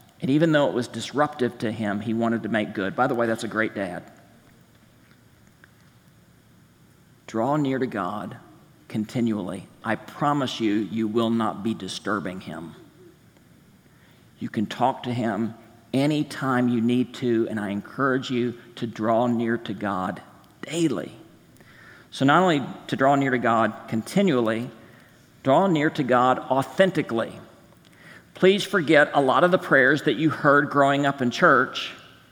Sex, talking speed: male, 150 wpm